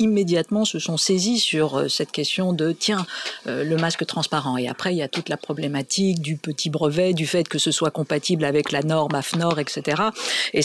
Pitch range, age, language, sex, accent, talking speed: 155-190 Hz, 50-69, French, female, French, 205 wpm